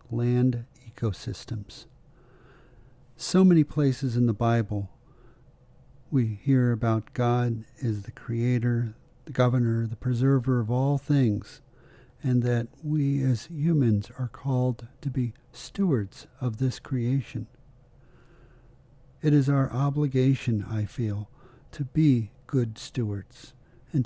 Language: English